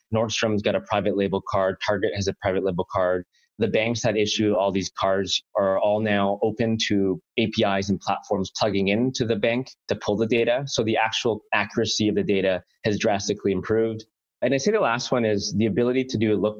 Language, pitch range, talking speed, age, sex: English, 95-110 Hz, 210 wpm, 20-39, male